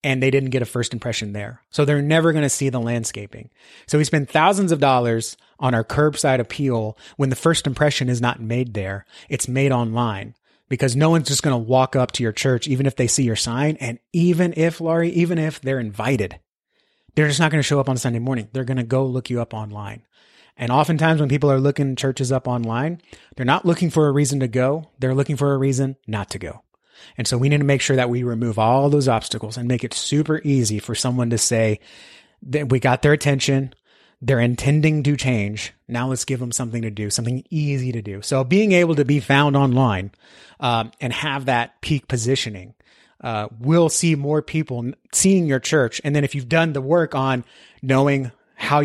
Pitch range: 120-145 Hz